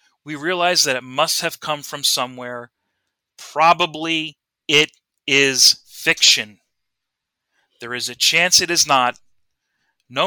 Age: 30-49